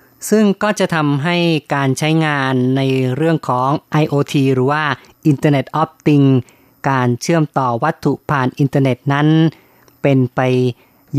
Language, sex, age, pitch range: Thai, female, 20-39, 130-150 Hz